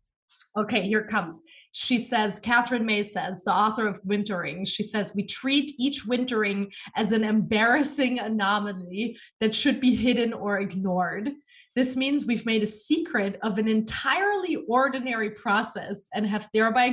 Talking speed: 150 wpm